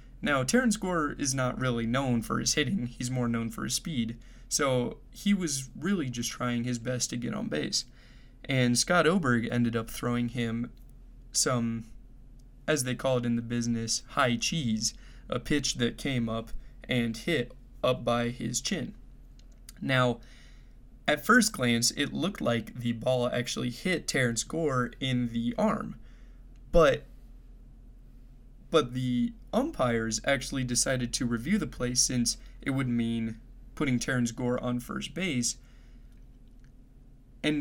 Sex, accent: male, American